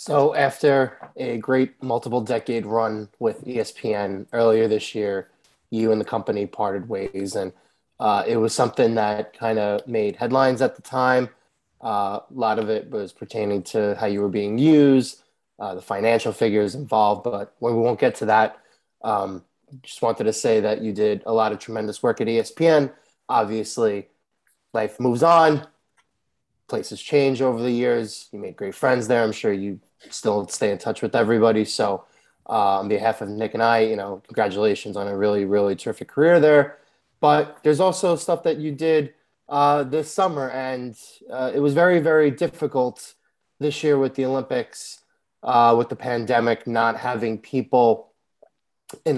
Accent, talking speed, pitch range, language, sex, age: American, 170 wpm, 110-135 Hz, English, male, 20-39